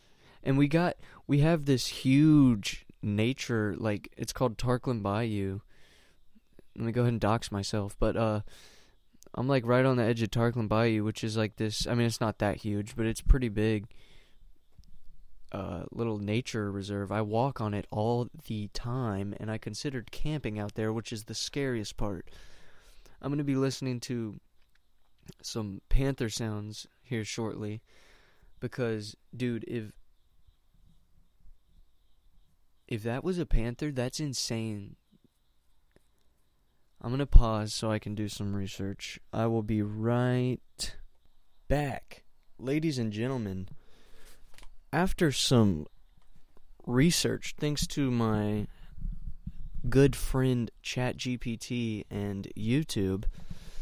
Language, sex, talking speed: English, male, 130 wpm